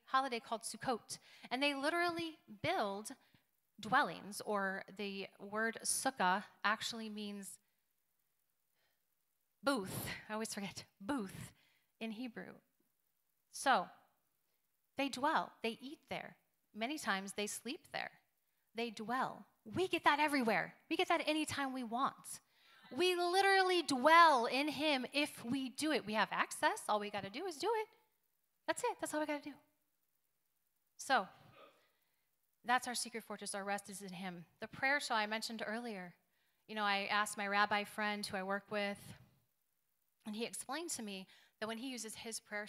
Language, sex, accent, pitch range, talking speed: English, female, American, 205-275 Hz, 155 wpm